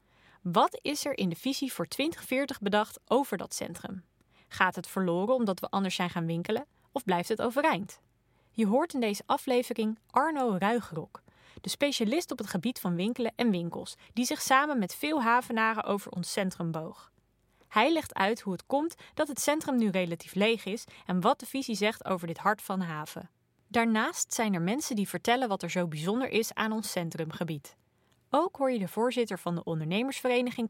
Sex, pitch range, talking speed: female, 175-255 Hz, 190 wpm